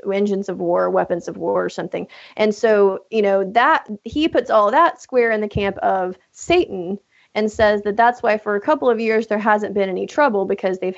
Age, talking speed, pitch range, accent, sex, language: 30-49, 220 wpm, 195-245 Hz, American, female, English